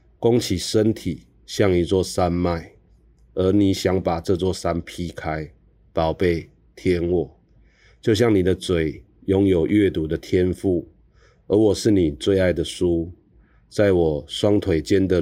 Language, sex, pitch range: Chinese, male, 80-95 Hz